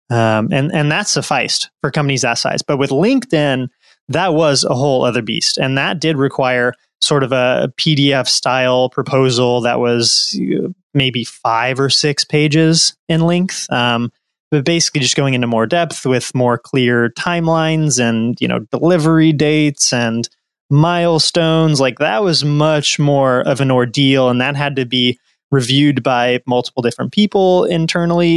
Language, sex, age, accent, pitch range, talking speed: English, male, 20-39, American, 130-155 Hz, 155 wpm